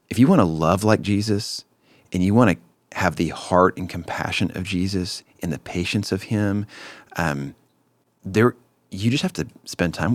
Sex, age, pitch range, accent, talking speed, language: male, 40-59, 85-105 Hz, American, 185 wpm, English